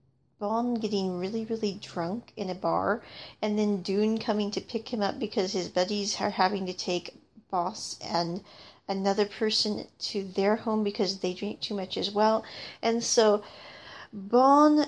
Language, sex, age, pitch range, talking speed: English, female, 40-59, 200-230 Hz, 160 wpm